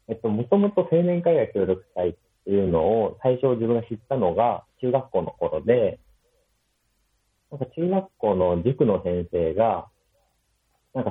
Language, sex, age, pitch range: Japanese, male, 40-59, 90-150 Hz